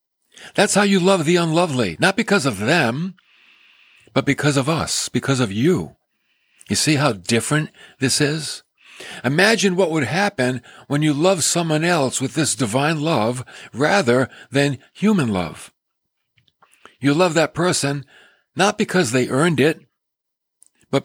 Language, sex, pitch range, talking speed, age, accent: English, male, 125-170 Hz, 145 wpm, 60-79, American